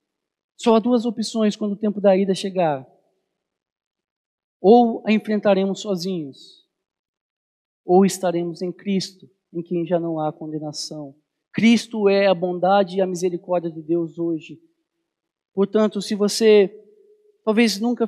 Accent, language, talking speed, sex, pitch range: Brazilian, Portuguese, 130 wpm, male, 180-230 Hz